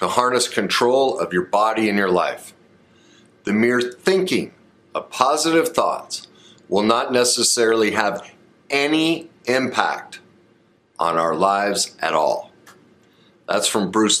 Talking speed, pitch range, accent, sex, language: 125 wpm, 110-155 Hz, American, male, English